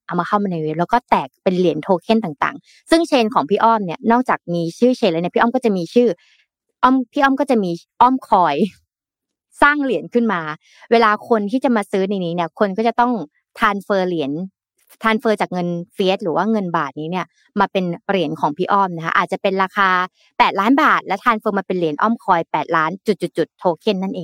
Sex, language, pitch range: female, Thai, 175-230 Hz